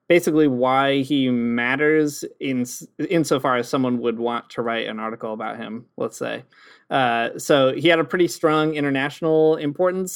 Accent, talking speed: American, 160 wpm